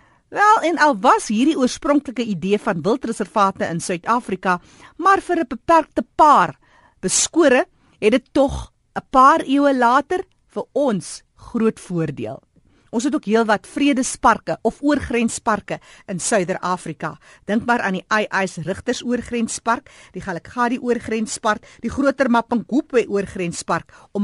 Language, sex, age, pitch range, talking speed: Dutch, female, 50-69, 185-260 Hz, 135 wpm